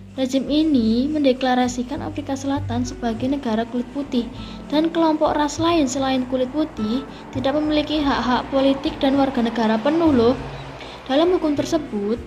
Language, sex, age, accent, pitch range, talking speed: Indonesian, female, 20-39, native, 235-285 Hz, 135 wpm